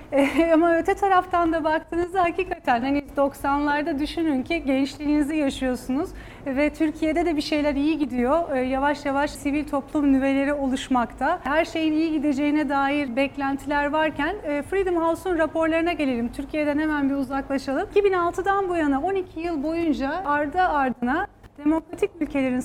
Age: 30-49